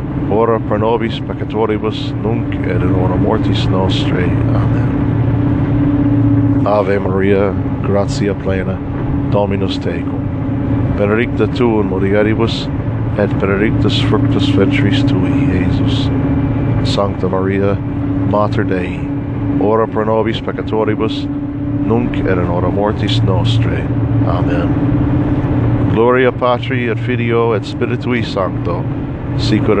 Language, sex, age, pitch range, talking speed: English, male, 50-69, 105-140 Hz, 100 wpm